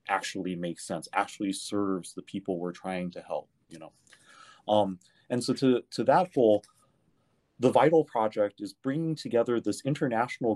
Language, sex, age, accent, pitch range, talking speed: English, male, 30-49, American, 95-115 Hz, 160 wpm